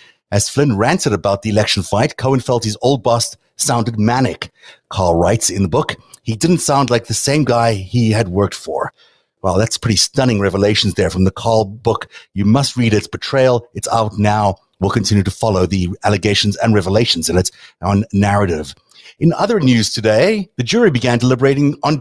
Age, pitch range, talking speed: 30-49, 105-135 Hz, 190 wpm